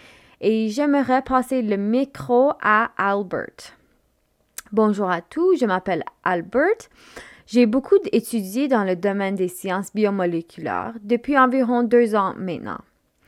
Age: 20-39